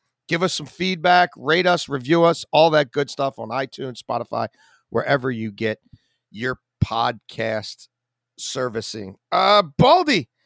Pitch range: 140-200 Hz